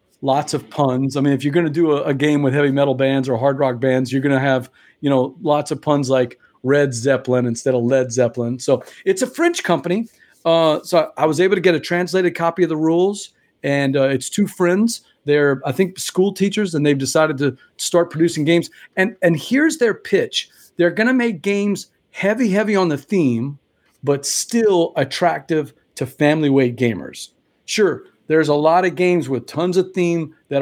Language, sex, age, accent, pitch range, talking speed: English, male, 40-59, American, 140-185 Hz, 205 wpm